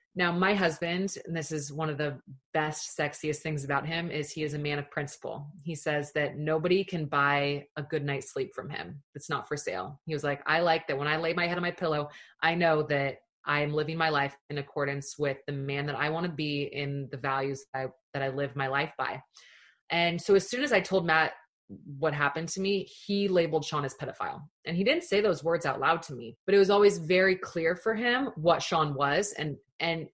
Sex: female